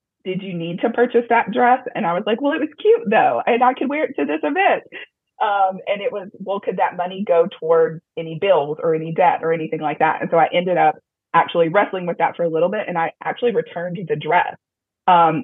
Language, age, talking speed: English, 30-49, 245 wpm